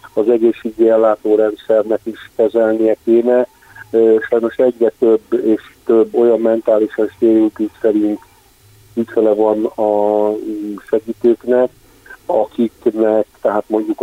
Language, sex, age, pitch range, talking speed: Hungarian, male, 40-59, 105-120 Hz, 90 wpm